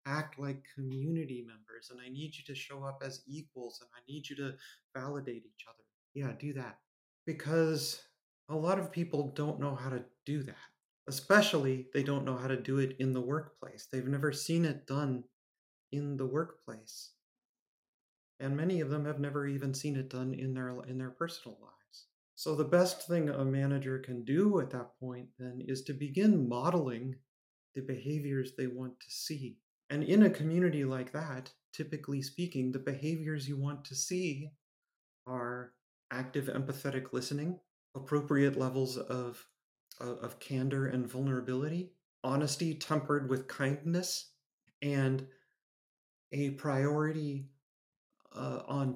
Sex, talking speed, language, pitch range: male, 155 wpm, English, 130-150 Hz